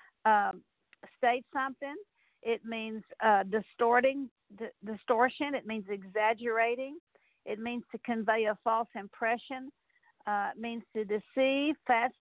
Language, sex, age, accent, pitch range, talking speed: English, female, 50-69, American, 205-245 Hz, 120 wpm